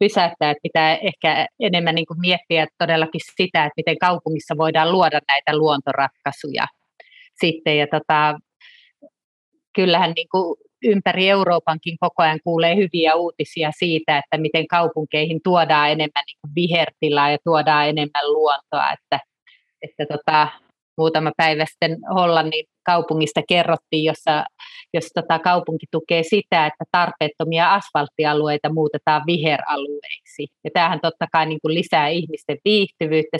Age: 30-49